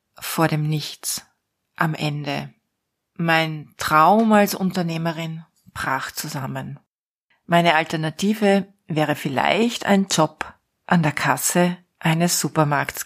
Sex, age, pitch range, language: female, 40-59, 160-215 Hz, German